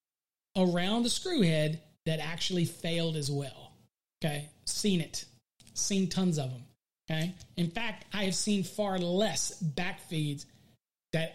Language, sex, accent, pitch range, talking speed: English, male, American, 160-215 Hz, 145 wpm